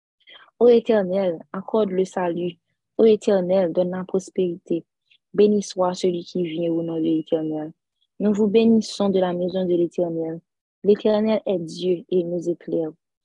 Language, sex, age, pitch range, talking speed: French, female, 20-39, 160-195 Hz, 155 wpm